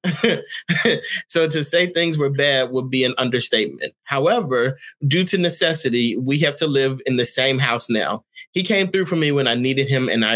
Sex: male